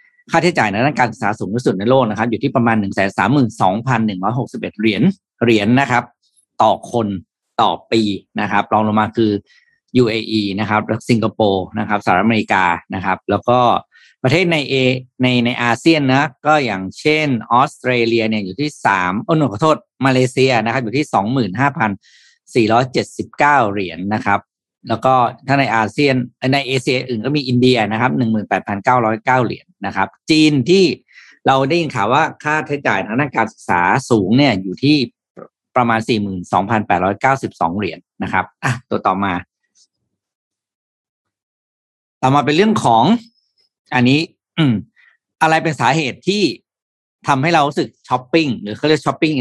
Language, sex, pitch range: Thai, male, 110-140 Hz